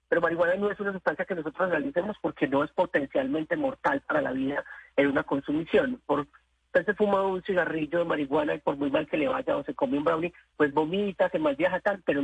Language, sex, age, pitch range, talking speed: Spanish, male, 40-59, 150-215 Hz, 225 wpm